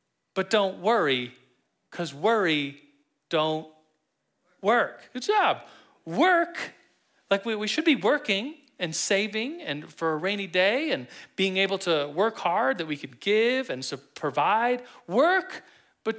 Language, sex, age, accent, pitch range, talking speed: English, male, 40-59, American, 155-230 Hz, 135 wpm